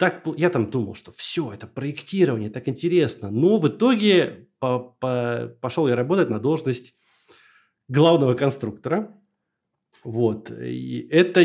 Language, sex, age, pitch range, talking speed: Russian, male, 20-39, 115-165 Hz, 115 wpm